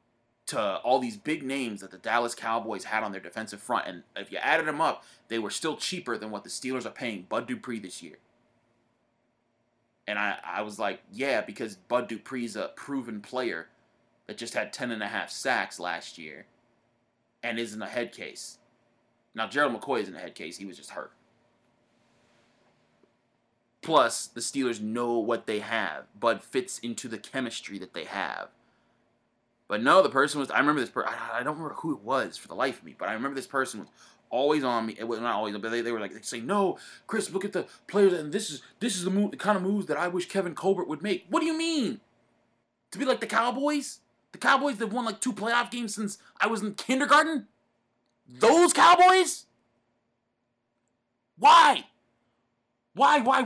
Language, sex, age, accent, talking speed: English, male, 20-39, American, 200 wpm